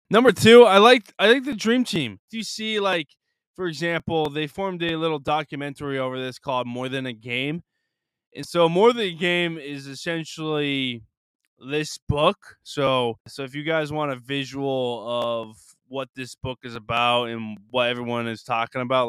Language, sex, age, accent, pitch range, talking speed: English, male, 20-39, American, 120-160 Hz, 180 wpm